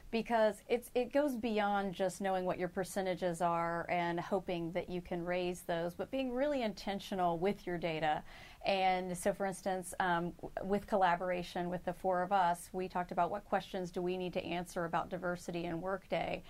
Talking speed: 190 wpm